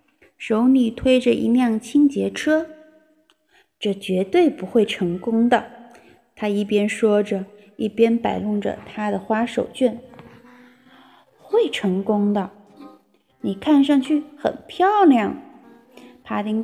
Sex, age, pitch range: female, 20-39, 215-285 Hz